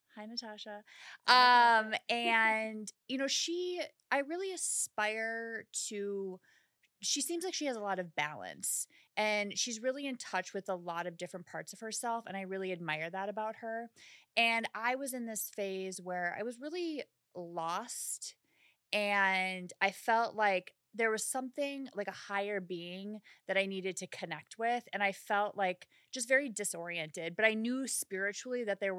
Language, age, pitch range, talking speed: English, 20-39, 190-245 Hz, 170 wpm